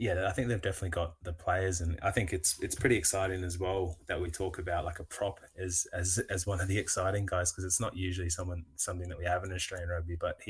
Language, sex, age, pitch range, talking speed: English, male, 20-39, 85-95 Hz, 255 wpm